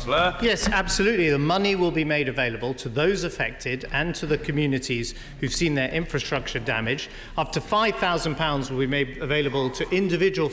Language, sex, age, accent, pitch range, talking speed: English, male, 40-59, British, 140-185 Hz, 170 wpm